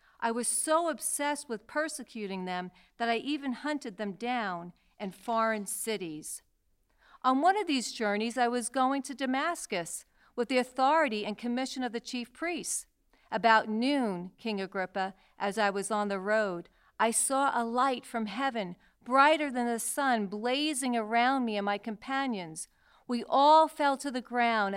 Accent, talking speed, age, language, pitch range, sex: American, 160 wpm, 50-69, English, 205-265 Hz, female